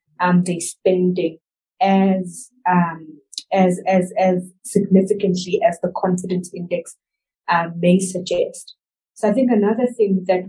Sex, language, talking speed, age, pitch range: female, English, 125 wpm, 20-39, 175-195 Hz